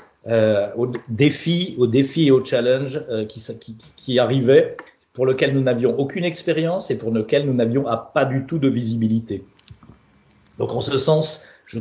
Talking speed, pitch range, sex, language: 175 wpm, 115-140 Hz, male, Hungarian